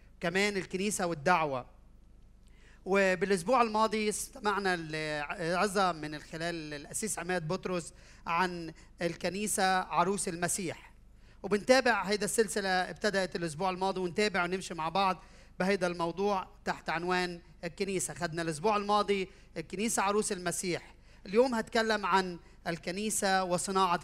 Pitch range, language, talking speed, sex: 150-200 Hz, Arabic, 105 wpm, male